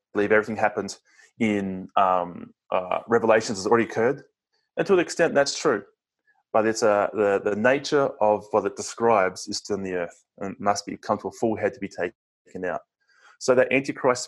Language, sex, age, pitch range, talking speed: English, male, 20-39, 100-135 Hz, 200 wpm